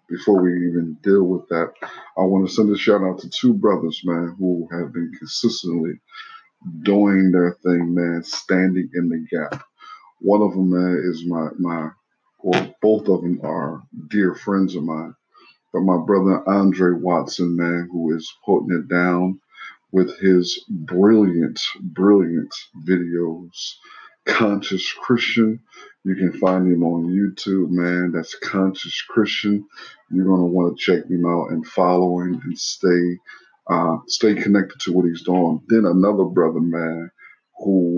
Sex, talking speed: male, 155 wpm